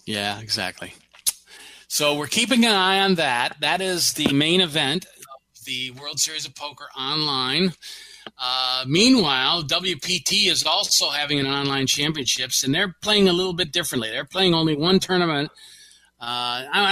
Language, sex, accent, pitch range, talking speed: English, male, American, 120-150 Hz, 155 wpm